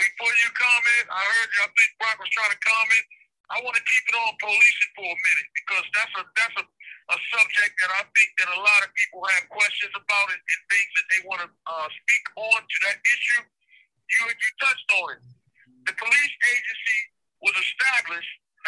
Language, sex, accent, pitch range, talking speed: English, male, American, 200-260 Hz, 200 wpm